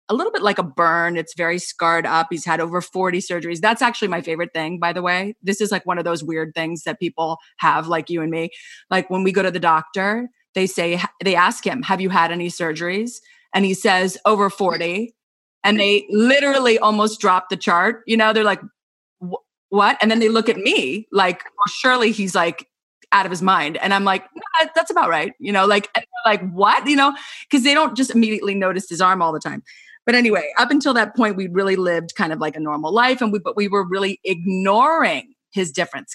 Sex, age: female, 30-49